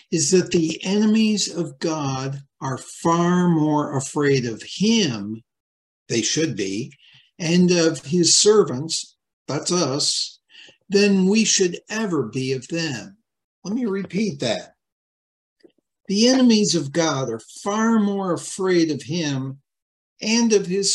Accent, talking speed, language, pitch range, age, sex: American, 130 wpm, English, 130-190 Hz, 60-79, male